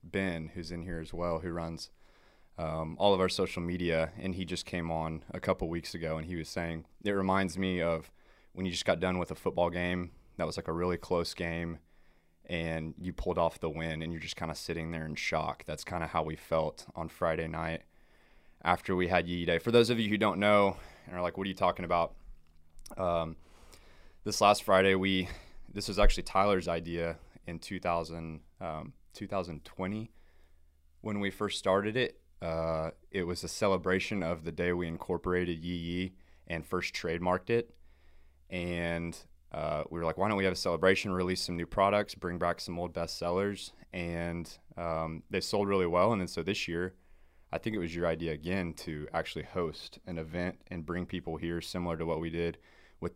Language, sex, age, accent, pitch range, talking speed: English, male, 20-39, American, 80-90 Hz, 205 wpm